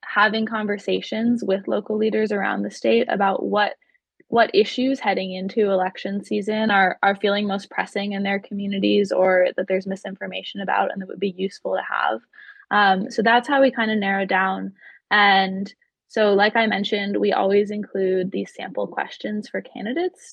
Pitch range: 190-220 Hz